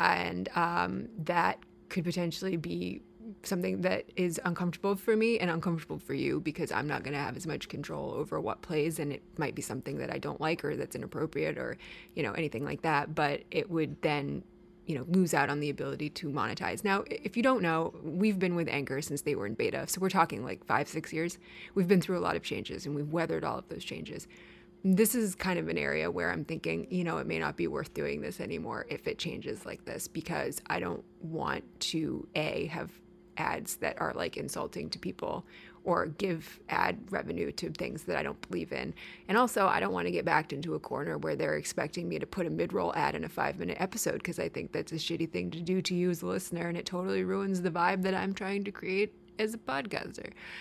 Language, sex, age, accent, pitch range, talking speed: English, female, 20-39, American, 155-190 Hz, 230 wpm